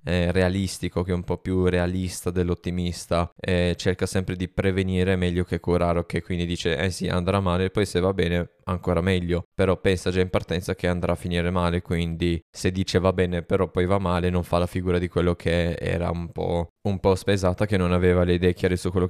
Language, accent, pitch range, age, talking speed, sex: Italian, native, 85-95 Hz, 10-29, 220 wpm, male